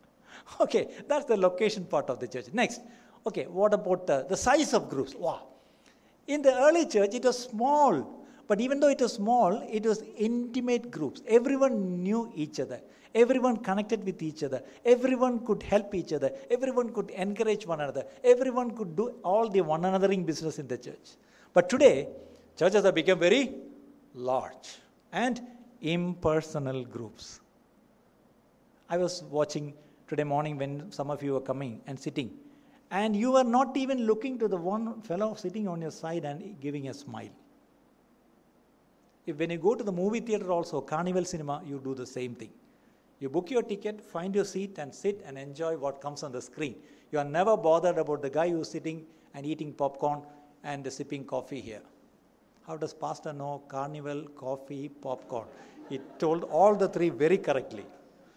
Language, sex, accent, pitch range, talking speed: Malayalam, male, native, 150-230 Hz, 175 wpm